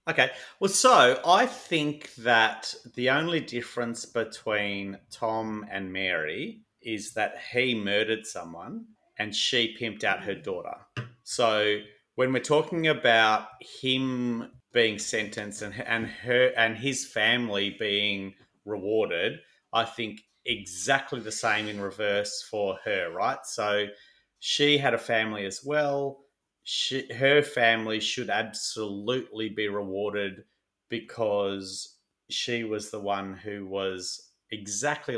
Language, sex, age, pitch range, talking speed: English, male, 30-49, 105-125 Hz, 125 wpm